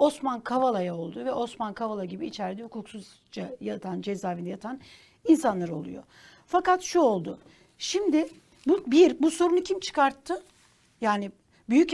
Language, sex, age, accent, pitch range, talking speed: Turkish, female, 60-79, native, 235-310 Hz, 130 wpm